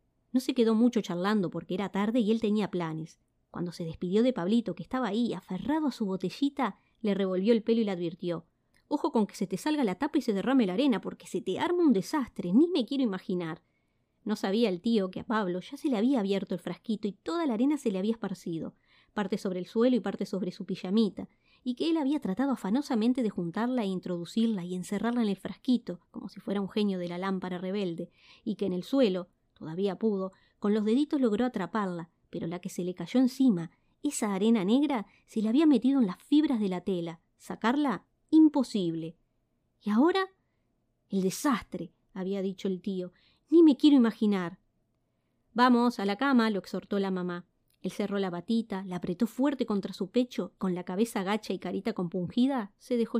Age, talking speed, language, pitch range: 20-39, 205 wpm, Spanish, 185-245 Hz